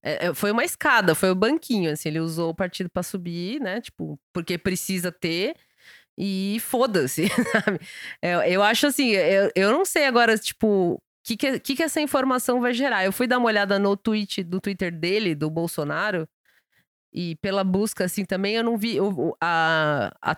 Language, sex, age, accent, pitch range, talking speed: Portuguese, female, 20-39, Brazilian, 170-220 Hz, 190 wpm